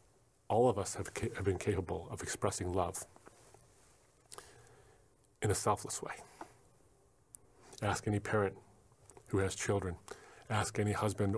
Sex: male